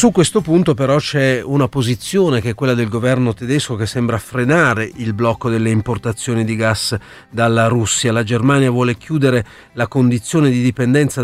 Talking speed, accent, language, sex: 170 wpm, native, Italian, male